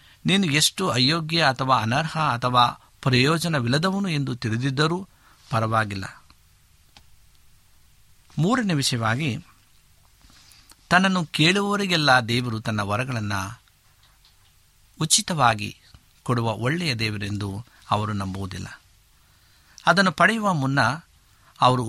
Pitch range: 100-140 Hz